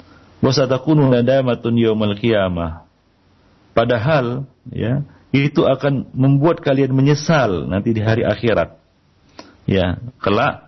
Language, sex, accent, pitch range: Indonesian, male, native, 95-125 Hz